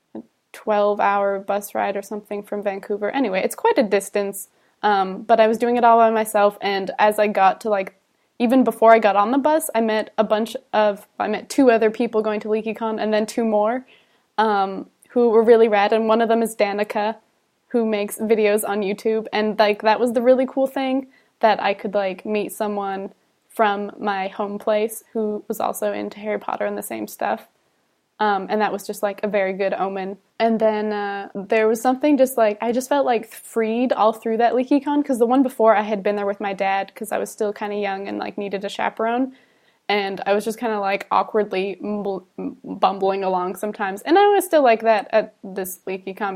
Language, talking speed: English, 215 wpm